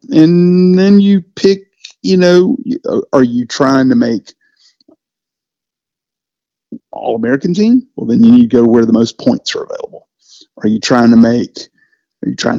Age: 50-69